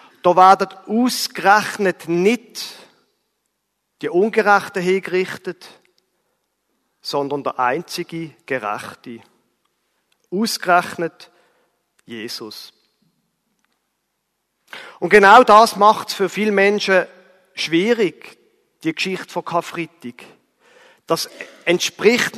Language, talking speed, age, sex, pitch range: German, 75 wpm, 50-69, male, 170-215 Hz